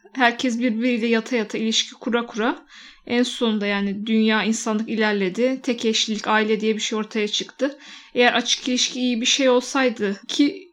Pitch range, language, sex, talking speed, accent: 210-245 Hz, Turkish, female, 160 wpm, native